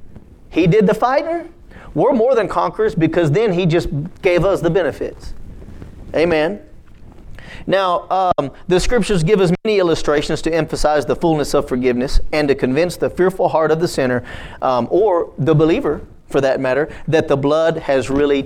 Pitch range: 125-175 Hz